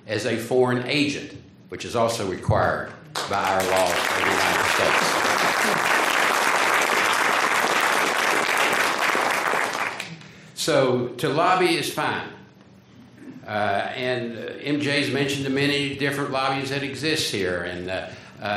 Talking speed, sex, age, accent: 115 wpm, male, 60-79, American